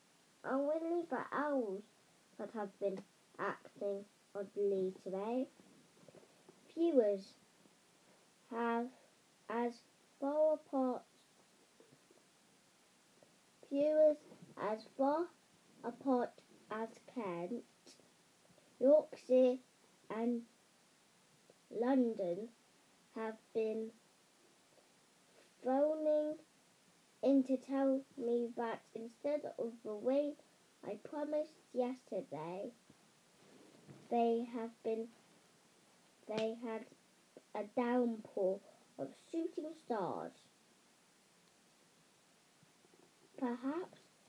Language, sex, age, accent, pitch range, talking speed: English, female, 10-29, British, 220-275 Hz, 65 wpm